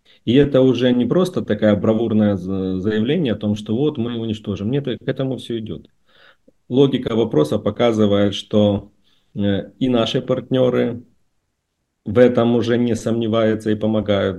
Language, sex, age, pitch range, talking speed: Russian, male, 40-59, 95-115 Hz, 140 wpm